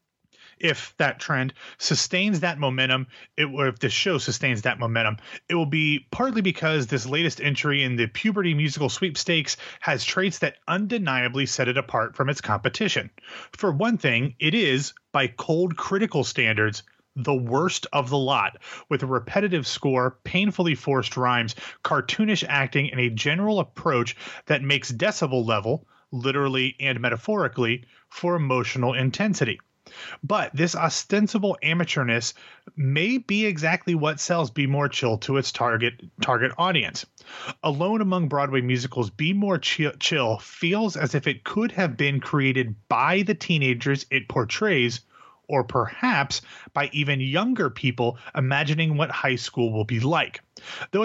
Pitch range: 125-165 Hz